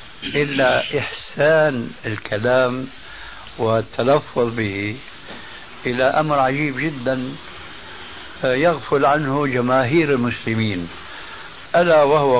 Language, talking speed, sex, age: Arabic, 75 wpm, male, 60-79